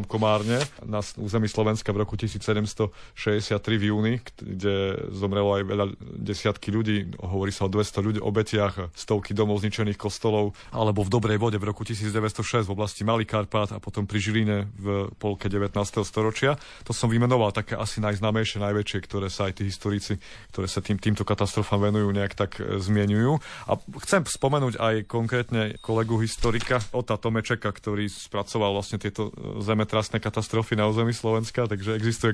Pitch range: 105-115 Hz